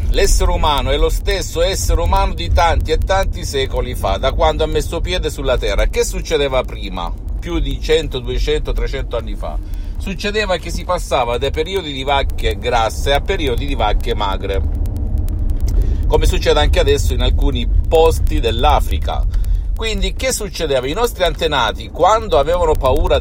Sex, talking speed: male, 160 wpm